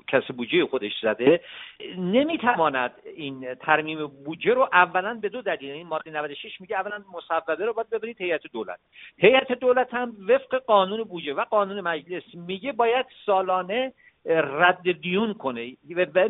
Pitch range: 165-230 Hz